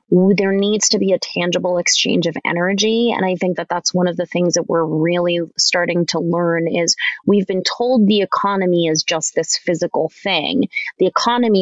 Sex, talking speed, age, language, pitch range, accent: female, 190 wpm, 20-39, English, 175-220 Hz, American